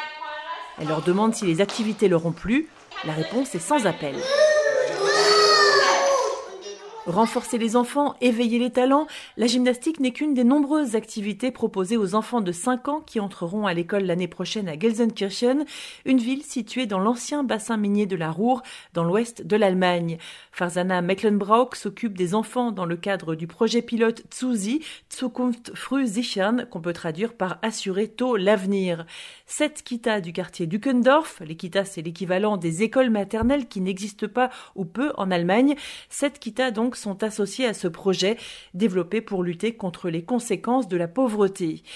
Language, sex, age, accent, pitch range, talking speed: French, female, 40-59, French, 190-255 Hz, 160 wpm